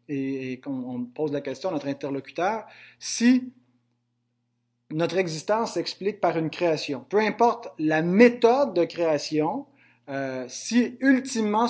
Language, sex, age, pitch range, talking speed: French, male, 30-49, 130-185 Hz, 125 wpm